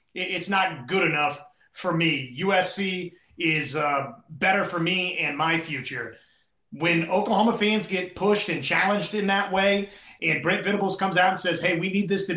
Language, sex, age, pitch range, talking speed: English, male, 30-49, 160-195 Hz, 180 wpm